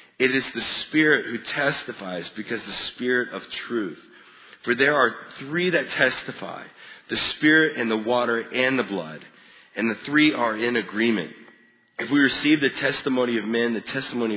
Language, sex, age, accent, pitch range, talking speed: English, male, 40-59, American, 110-135 Hz, 165 wpm